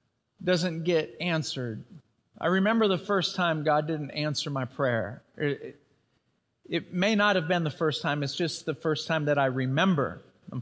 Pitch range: 125-145 Hz